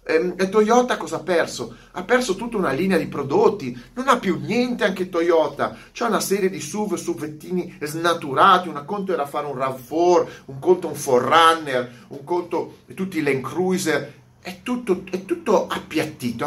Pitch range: 135-185 Hz